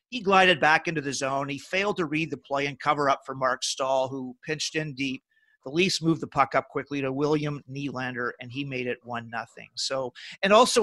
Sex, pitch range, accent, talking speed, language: male, 140-175 Hz, American, 225 wpm, English